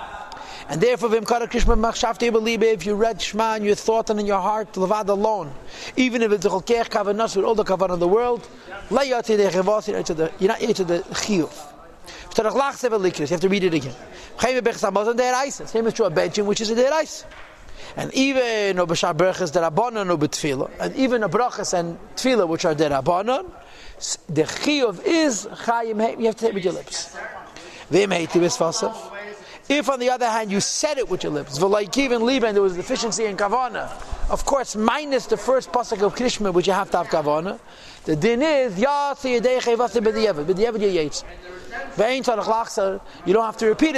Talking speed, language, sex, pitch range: 140 wpm, English, male, 195-250 Hz